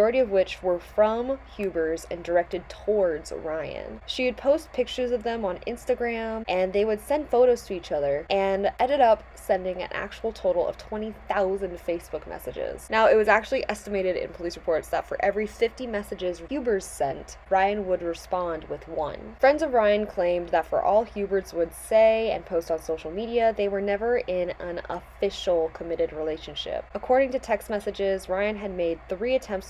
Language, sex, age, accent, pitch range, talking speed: English, female, 10-29, American, 170-225 Hz, 180 wpm